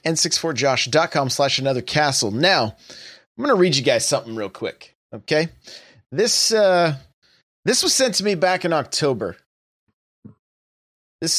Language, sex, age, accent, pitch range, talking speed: English, male, 30-49, American, 120-175 Hz, 130 wpm